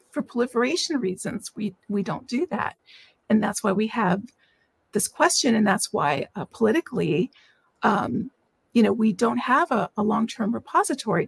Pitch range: 210-265 Hz